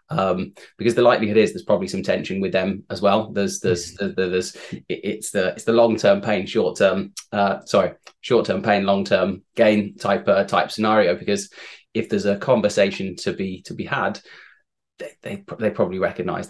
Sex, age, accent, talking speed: male, 20-39, British, 180 wpm